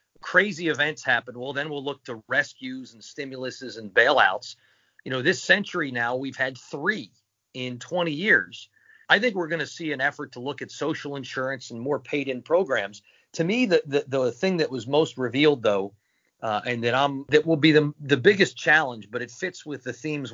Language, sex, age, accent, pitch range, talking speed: English, male, 40-59, American, 130-165 Hz, 205 wpm